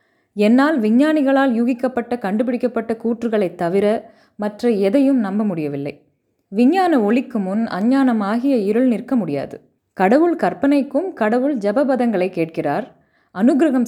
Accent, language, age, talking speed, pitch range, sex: native, Tamil, 20-39, 100 wpm, 195-270 Hz, female